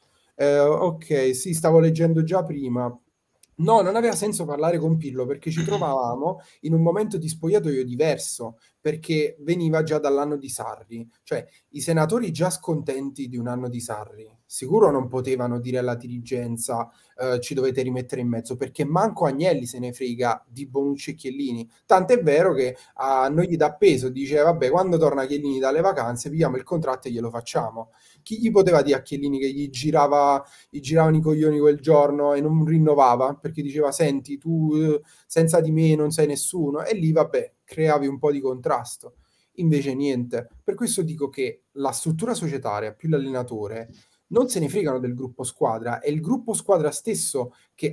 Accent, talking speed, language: native, 180 wpm, Italian